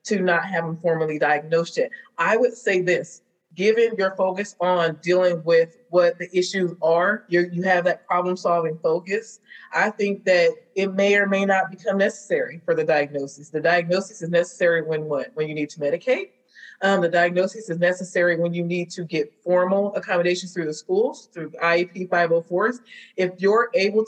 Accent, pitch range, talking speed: American, 175-205 Hz, 175 wpm